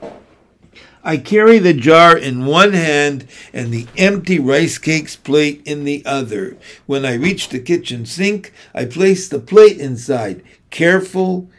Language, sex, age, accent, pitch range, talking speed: English, male, 60-79, American, 135-185 Hz, 145 wpm